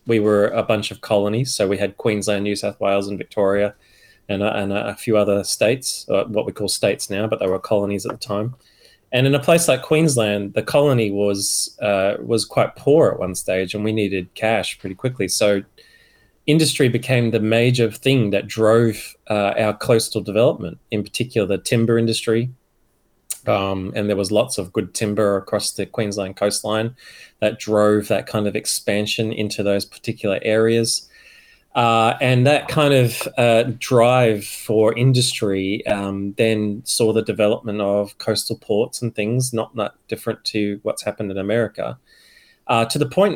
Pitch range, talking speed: 100-120 Hz, 175 wpm